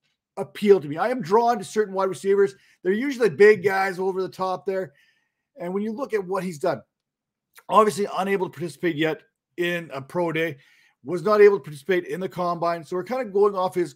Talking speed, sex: 215 wpm, male